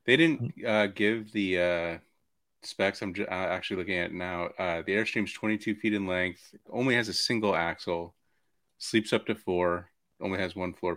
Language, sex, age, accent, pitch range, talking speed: English, male, 30-49, American, 85-95 Hz, 180 wpm